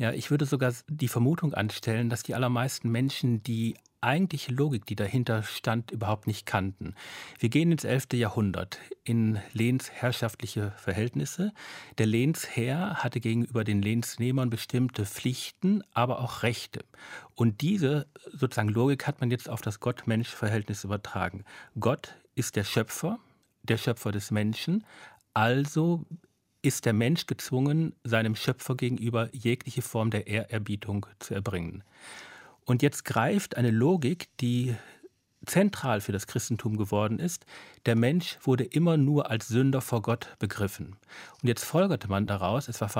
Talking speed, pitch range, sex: 140 wpm, 110-135 Hz, male